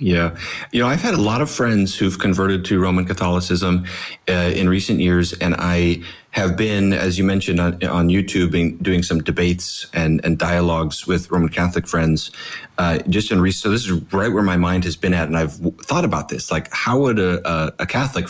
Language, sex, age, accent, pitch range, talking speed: English, male, 30-49, American, 85-100 Hz, 215 wpm